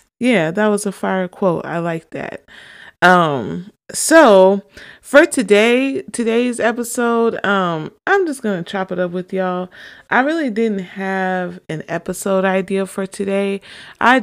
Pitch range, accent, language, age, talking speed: 170-200 Hz, American, English, 30-49, 150 wpm